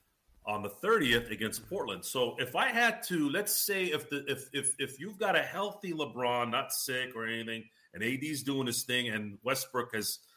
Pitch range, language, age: 120-155 Hz, English, 40-59